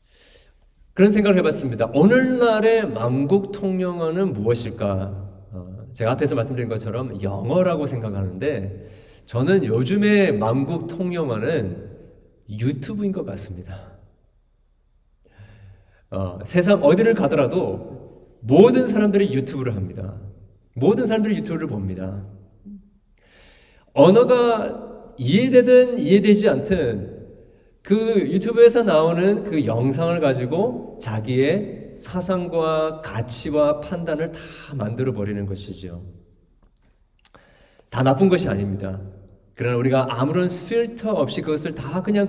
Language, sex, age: Korean, male, 40-59